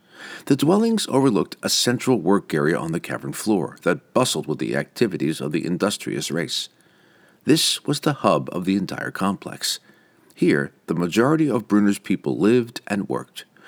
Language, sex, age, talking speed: English, male, 50-69, 160 wpm